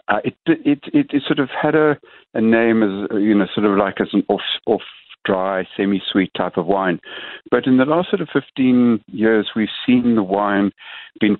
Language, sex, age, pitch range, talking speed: English, male, 60-79, 90-110 Hz, 185 wpm